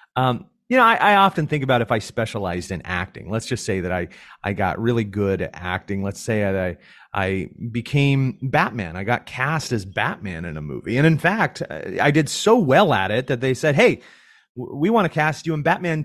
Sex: male